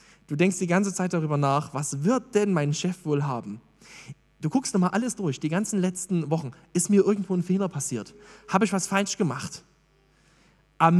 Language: German